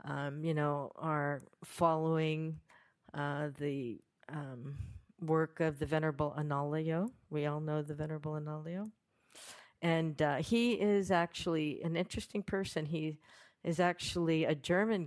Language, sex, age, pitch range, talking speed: English, female, 50-69, 145-170 Hz, 125 wpm